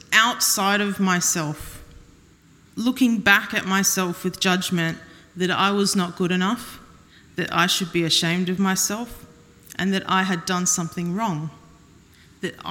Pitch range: 180-225 Hz